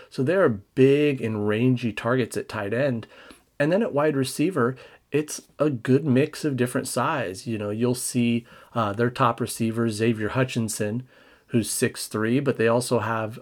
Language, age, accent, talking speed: English, 40-59, American, 170 wpm